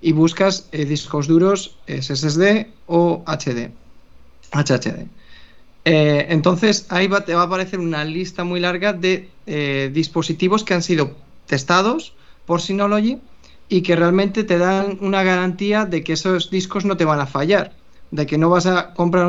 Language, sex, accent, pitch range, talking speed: Spanish, male, Spanish, 150-190 Hz, 160 wpm